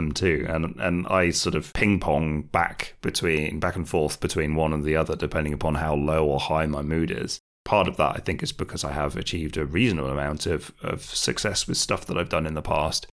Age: 30-49